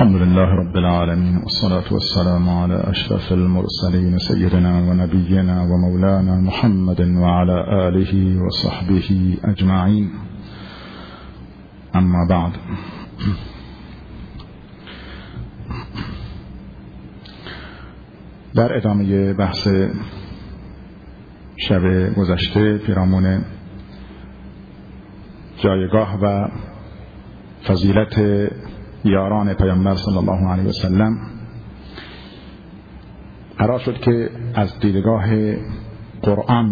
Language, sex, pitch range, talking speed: Persian, male, 95-110 Hz, 65 wpm